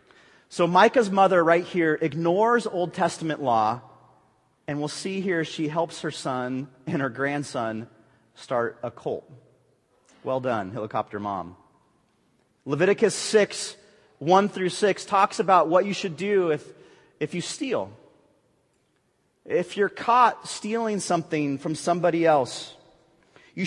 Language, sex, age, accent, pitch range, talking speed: English, male, 30-49, American, 160-230 Hz, 130 wpm